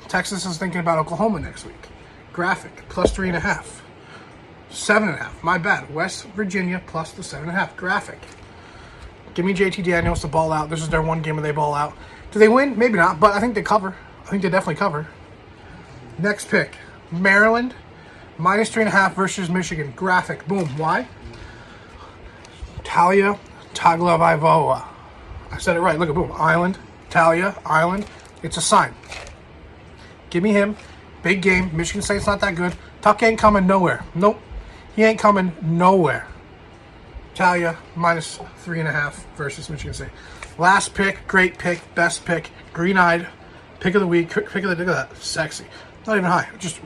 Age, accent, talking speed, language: 30-49, American, 175 wpm, English